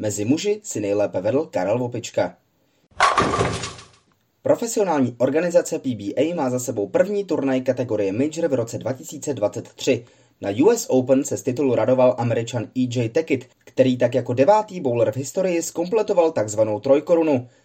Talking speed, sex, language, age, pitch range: 135 wpm, male, Czech, 20-39, 120-165 Hz